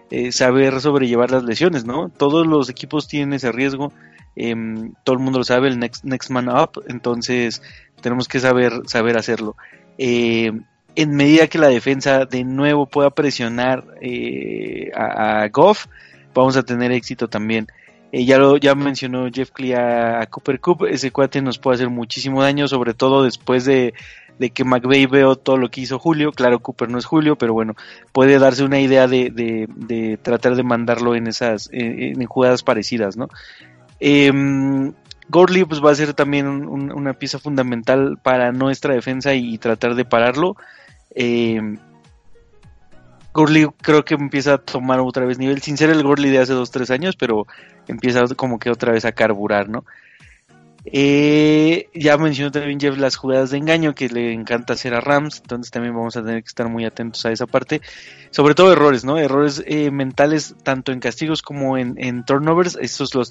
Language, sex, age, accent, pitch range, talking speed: Spanish, male, 20-39, Mexican, 120-140 Hz, 180 wpm